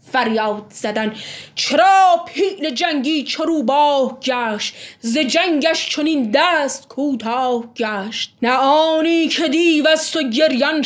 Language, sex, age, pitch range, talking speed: Persian, female, 20-39, 240-330 Hz, 100 wpm